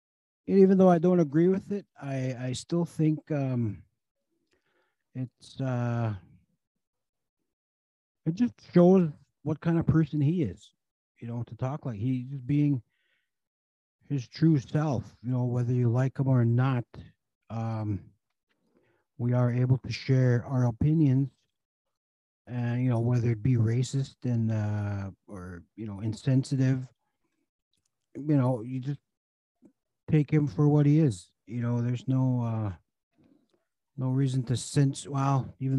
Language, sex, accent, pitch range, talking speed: English, male, American, 115-145 Hz, 145 wpm